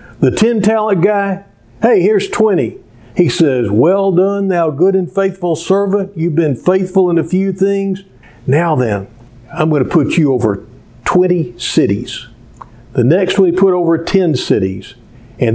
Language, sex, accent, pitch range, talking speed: English, male, American, 125-185 Hz, 160 wpm